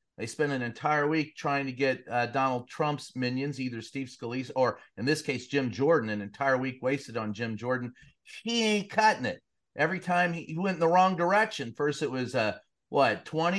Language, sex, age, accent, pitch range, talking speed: English, male, 40-59, American, 125-165 Hz, 210 wpm